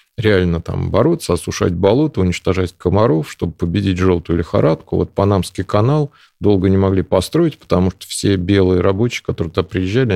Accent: native